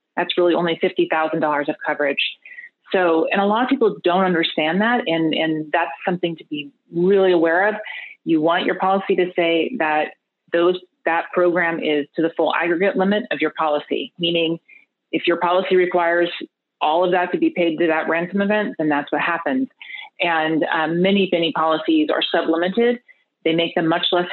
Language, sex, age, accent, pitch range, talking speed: English, female, 30-49, American, 160-195 Hz, 185 wpm